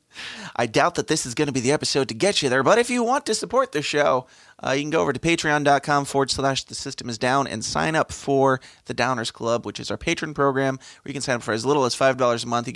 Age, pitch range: 20-39, 120-150 Hz